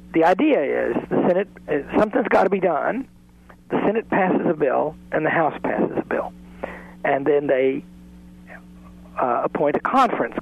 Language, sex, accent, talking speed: English, male, American, 160 wpm